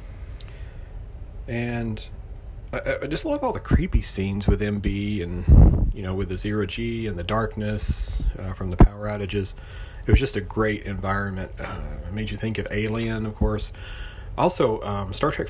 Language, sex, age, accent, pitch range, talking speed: English, male, 30-49, American, 95-110 Hz, 165 wpm